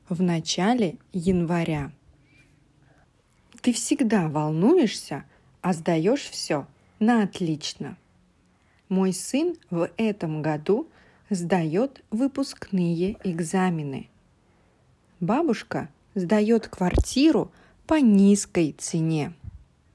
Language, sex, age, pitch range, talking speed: English, female, 30-49, 160-220 Hz, 75 wpm